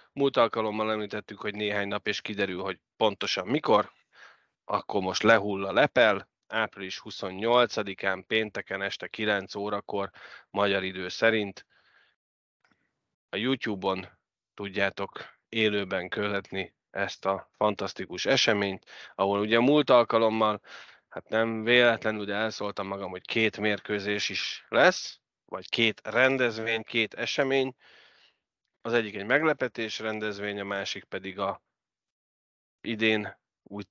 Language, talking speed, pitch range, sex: Hungarian, 115 wpm, 100-110 Hz, male